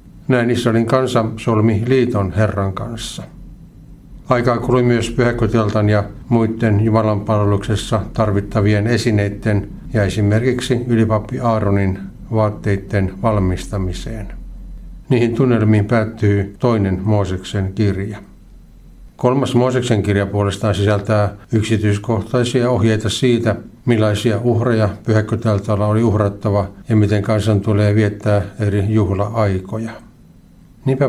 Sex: male